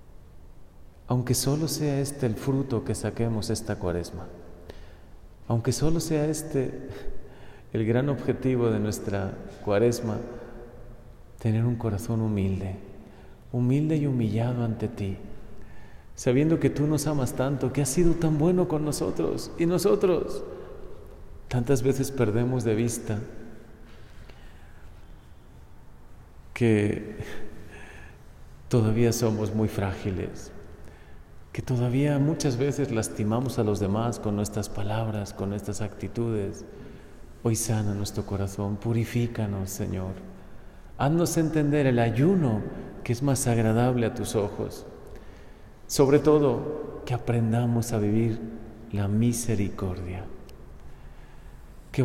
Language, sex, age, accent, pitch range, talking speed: Spanish, male, 40-59, Mexican, 105-130 Hz, 110 wpm